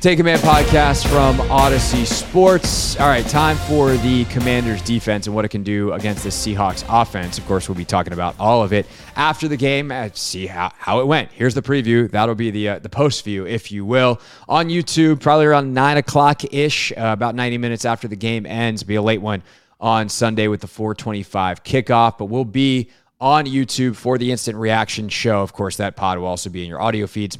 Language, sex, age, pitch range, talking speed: English, male, 20-39, 100-130 Hz, 220 wpm